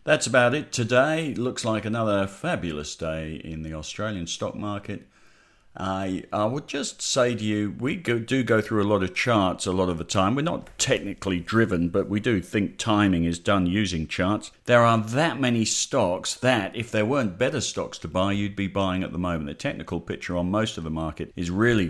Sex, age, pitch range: male, 50-69, 85-110 Hz